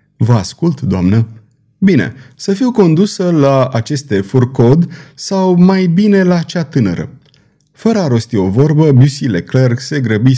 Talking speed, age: 145 wpm, 30-49